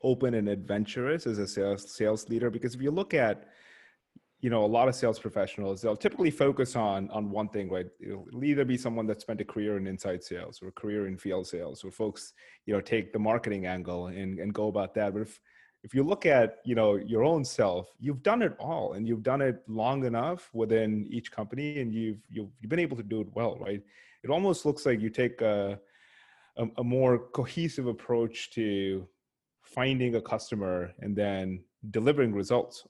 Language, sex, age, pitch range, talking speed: English, male, 30-49, 100-125 Hz, 210 wpm